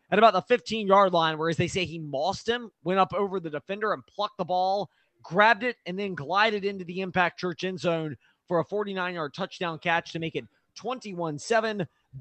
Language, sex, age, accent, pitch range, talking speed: English, male, 20-39, American, 170-220 Hz, 195 wpm